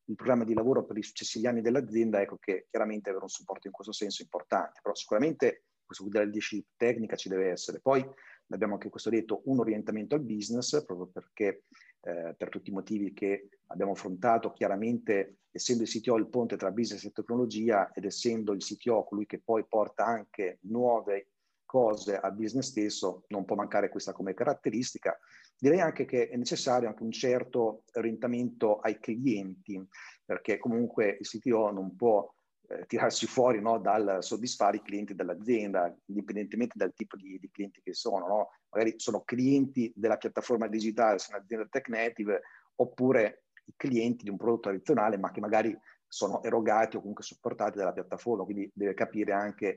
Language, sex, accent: Italian, male, native